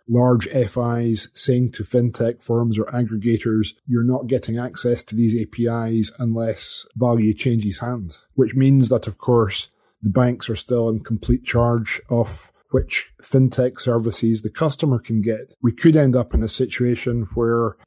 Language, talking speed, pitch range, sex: English, 160 wpm, 115-125 Hz, male